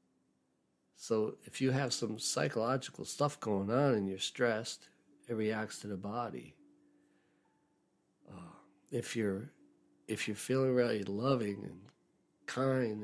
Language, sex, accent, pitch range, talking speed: English, male, American, 100-135 Hz, 125 wpm